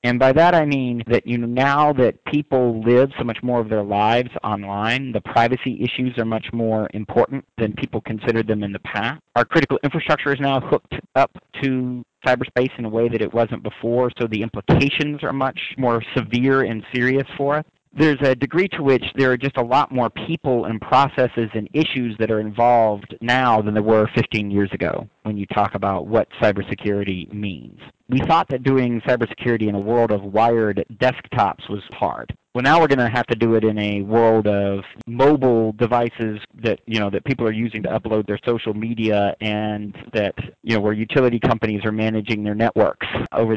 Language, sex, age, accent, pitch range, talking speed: English, male, 40-59, American, 110-130 Hz, 200 wpm